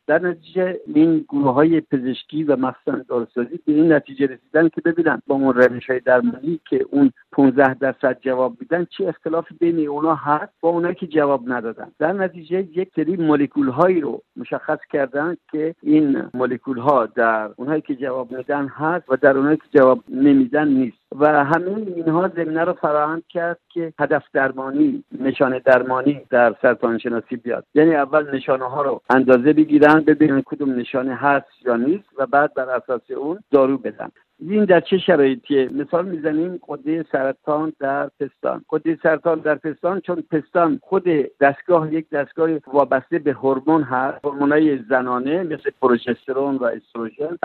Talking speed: 160 wpm